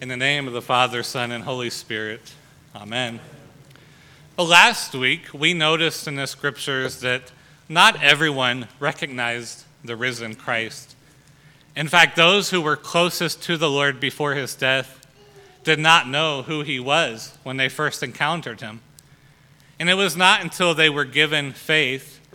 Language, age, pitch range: English, 30-49, 135-160 Hz